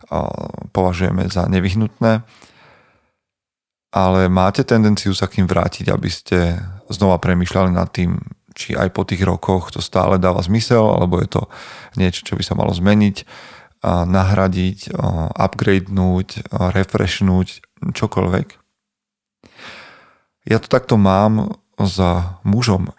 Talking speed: 115 wpm